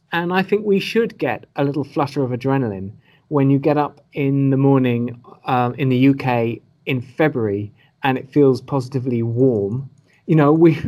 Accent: British